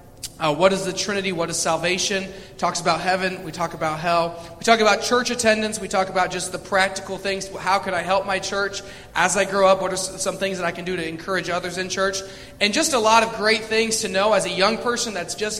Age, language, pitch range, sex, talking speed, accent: 30-49, English, 175-200 Hz, male, 250 wpm, American